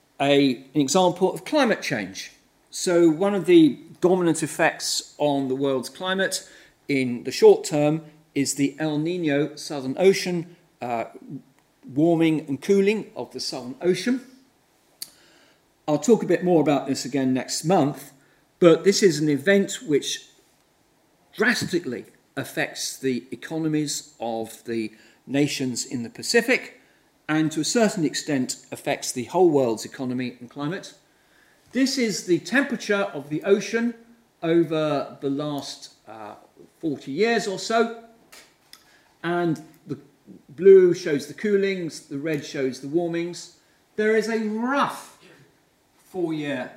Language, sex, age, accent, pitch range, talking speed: English, male, 40-59, British, 135-190 Hz, 130 wpm